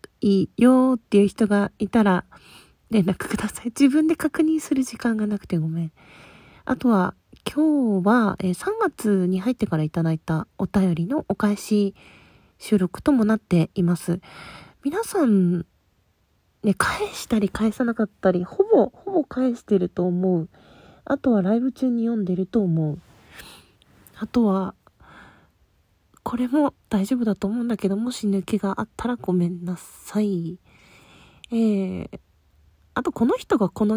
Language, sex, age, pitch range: Japanese, female, 40-59, 180-240 Hz